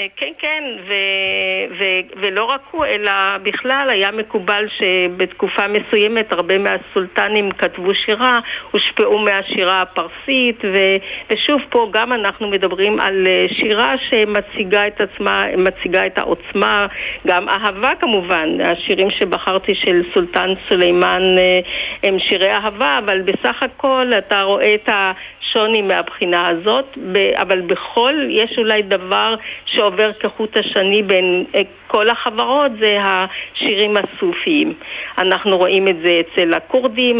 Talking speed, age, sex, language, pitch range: 120 wpm, 50-69, female, Hebrew, 190-225 Hz